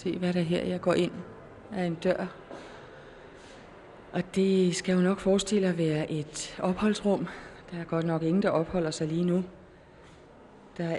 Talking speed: 175 wpm